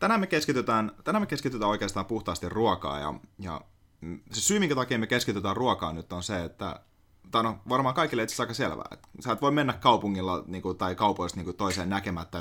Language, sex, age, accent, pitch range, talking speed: Finnish, male, 30-49, native, 90-115 Hz, 205 wpm